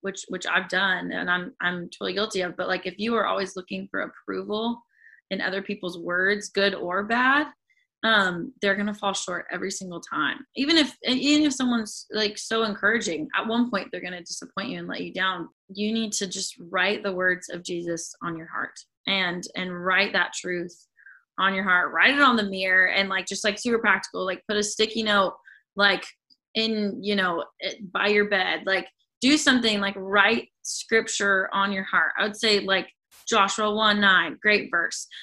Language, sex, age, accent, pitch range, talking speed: English, female, 20-39, American, 185-225 Hz, 200 wpm